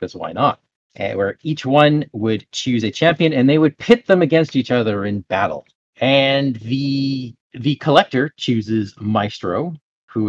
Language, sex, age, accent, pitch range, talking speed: English, male, 30-49, American, 105-135 Hz, 165 wpm